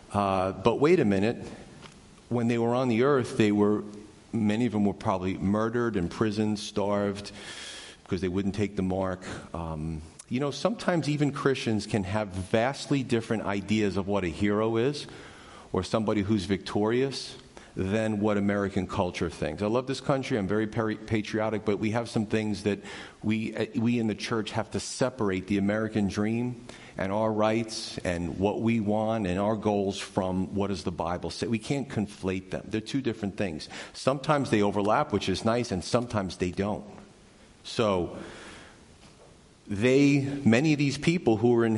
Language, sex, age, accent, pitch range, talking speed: English, male, 40-59, American, 100-120 Hz, 170 wpm